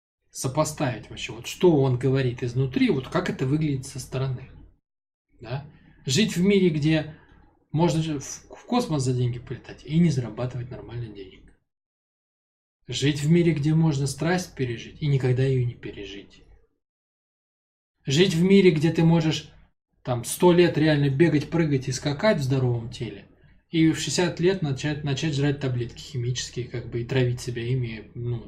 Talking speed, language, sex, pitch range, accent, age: 155 wpm, Russian, male, 125-160 Hz, native, 20-39